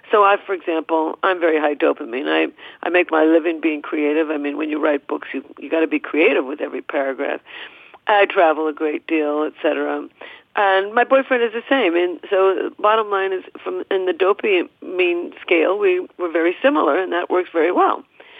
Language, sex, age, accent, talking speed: English, female, 50-69, American, 205 wpm